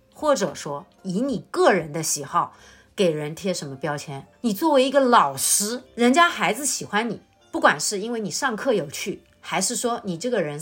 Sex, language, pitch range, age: female, Chinese, 175-280 Hz, 30-49